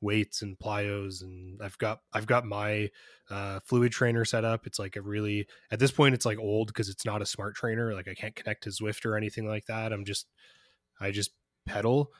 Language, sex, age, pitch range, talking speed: English, male, 20-39, 105-120 Hz, 220 wpm